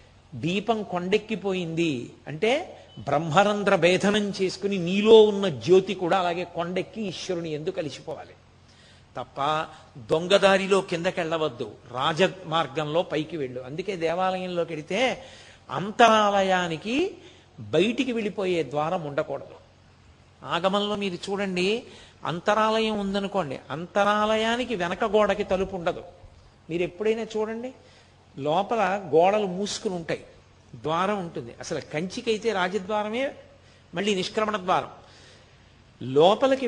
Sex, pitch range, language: male, 165-220 Hz, Telugu